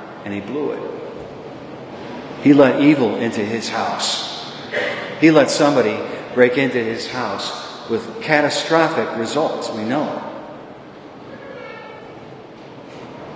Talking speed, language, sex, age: 105 wpm, English, male, 50-69